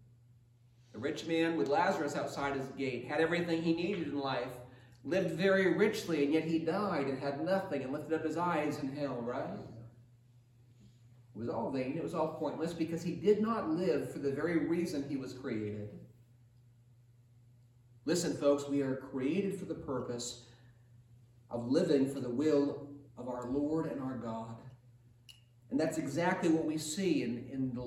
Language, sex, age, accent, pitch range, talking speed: English, male, 40-59, American, 120-195 Hz, 170 wpm